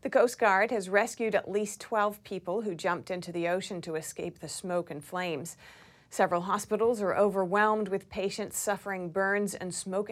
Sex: female